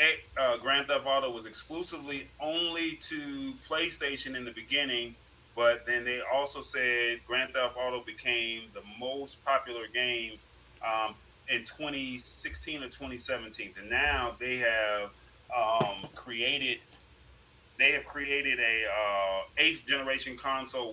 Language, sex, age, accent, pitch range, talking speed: English, male, 30-49, American, 110-135 Hz, 125 wpm